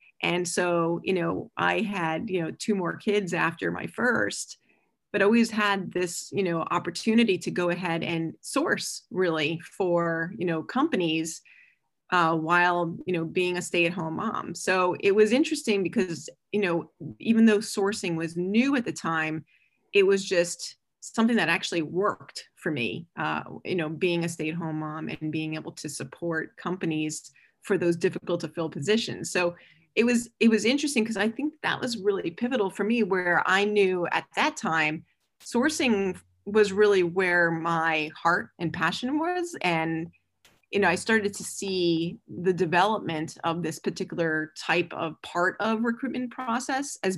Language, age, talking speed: English, 30-49, 170 wpm